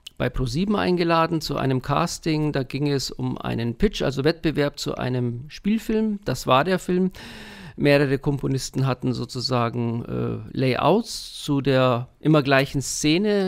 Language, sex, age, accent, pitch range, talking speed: English, male, 50-69, German, 135-165 Hz, 140 wpm